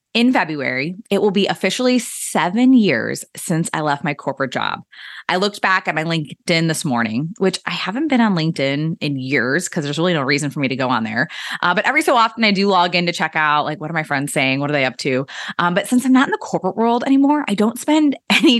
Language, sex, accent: English, female, American